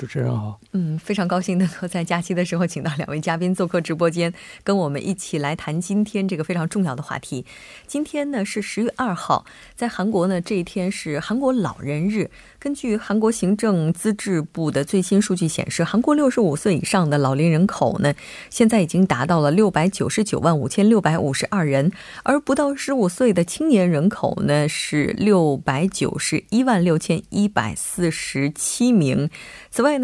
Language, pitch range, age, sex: Korean, 160-215 Hz, 20-39, female